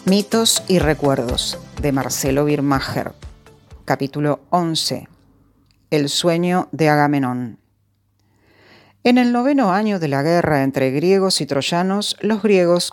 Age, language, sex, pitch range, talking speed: 40-59, Spanish, female, 140-180 Hz, 115 wpm